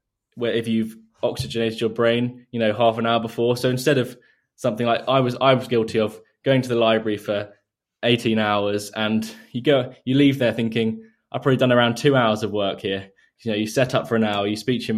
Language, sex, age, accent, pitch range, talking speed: English, male, 10-29, British, 110-125 Hz, 230 wpm